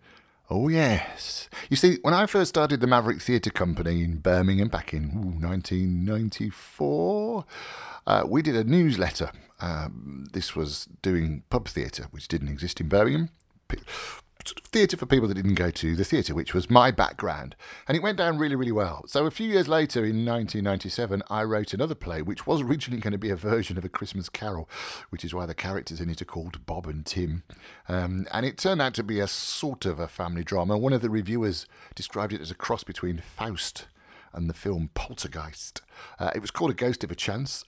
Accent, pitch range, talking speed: British, 85-120 Hz, 200 wpm